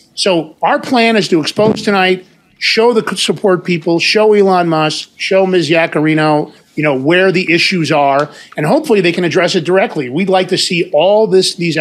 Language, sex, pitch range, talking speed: English, male, 165-225 Hz, 185 wpm